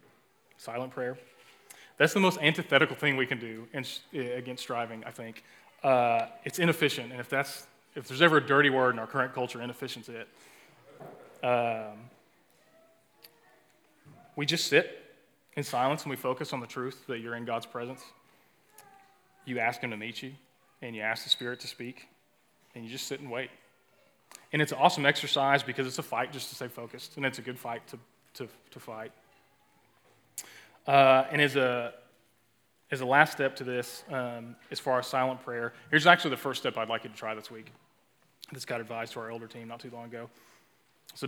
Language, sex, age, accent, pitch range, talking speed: English, male, 20-39, American, 120-140 Hz, 190 wpm